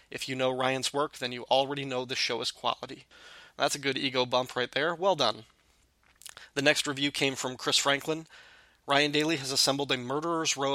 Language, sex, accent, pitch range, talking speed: English, male, American, 130-150 Hz, 200 wpm